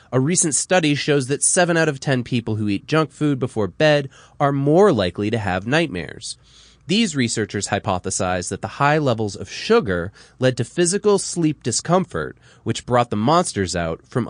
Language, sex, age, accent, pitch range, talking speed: English, male, 30-49, American, 105-150 Hz, 175 wpm